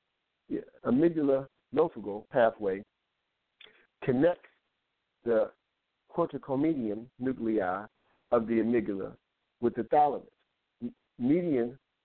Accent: American